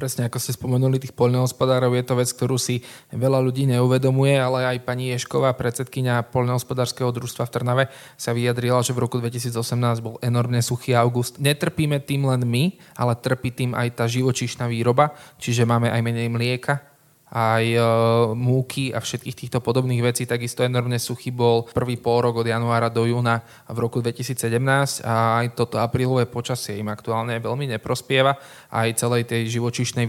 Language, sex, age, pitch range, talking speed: Slovak, male, 20-39, 115-130 Hz, 170 wpm